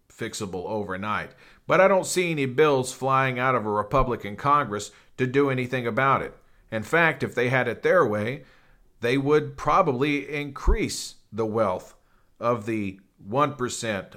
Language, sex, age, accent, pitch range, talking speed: English, male, 50-69, American, 115-145 Hz, 155 wpm